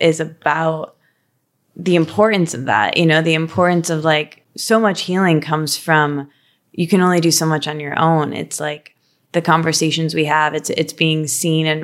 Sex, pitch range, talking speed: female, 160-185 Hz, 190 wpm